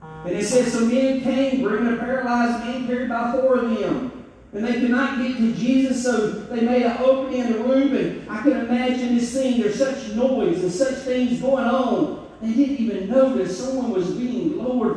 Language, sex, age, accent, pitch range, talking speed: English, male, 40-59, American, 215-265 Hz, 210 wpm